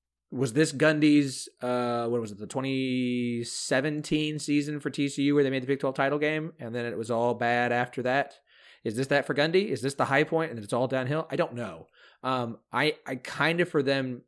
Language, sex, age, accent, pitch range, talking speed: English, male, 30-49, American, 115-150 Hz, 215 wpm